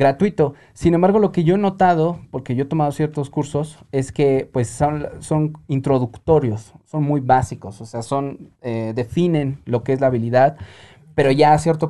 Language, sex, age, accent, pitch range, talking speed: Spanish, male, 30-49, Mexican, 125-155 Hz, 185 wpm